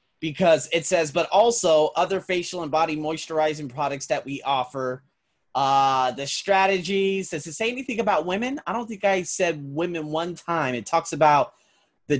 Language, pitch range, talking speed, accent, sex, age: English, 145-200 Hz, 170 wpm, American, male, 30-49